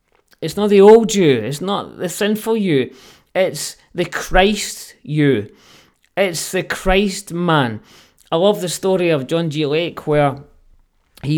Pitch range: 130-170 Hz